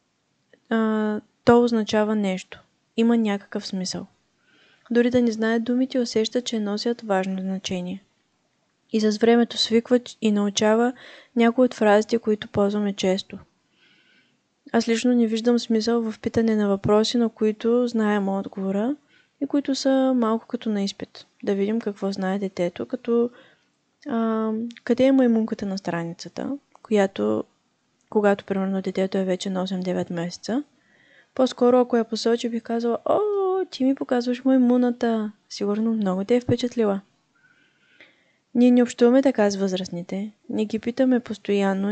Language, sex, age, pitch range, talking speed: Bulgarian, female, 20-39, 200-240 Hz, 140 wpm